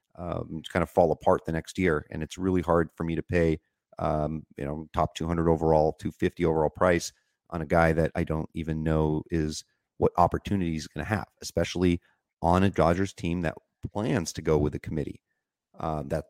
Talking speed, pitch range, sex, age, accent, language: 195 wpm, 80-90 Hz, male, 30-49, American, English